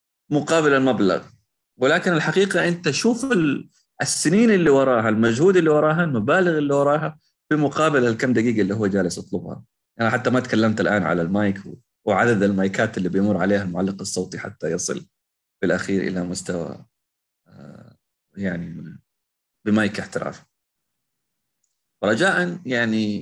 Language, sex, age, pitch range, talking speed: Arabic, male, 30-49, 100-155 Hz, 125 wpm